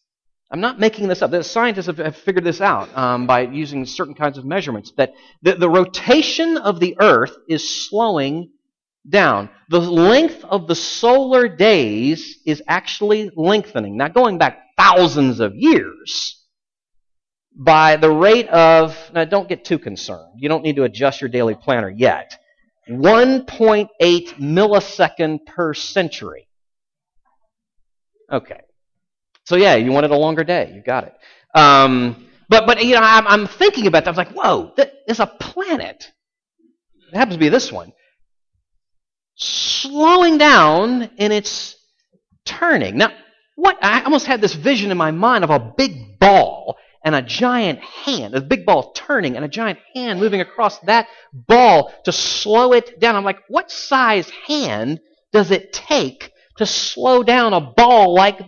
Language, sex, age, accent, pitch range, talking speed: English, male, 40-59, American, 160-250 Hz, 155 wpm